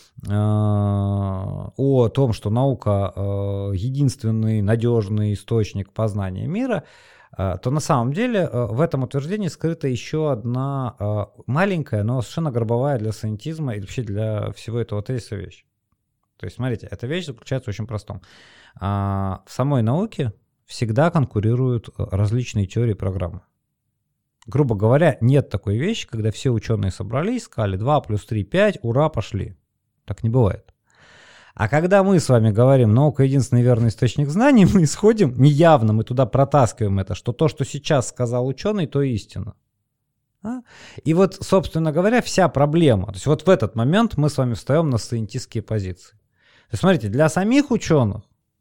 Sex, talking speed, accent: male, 150 wpm, native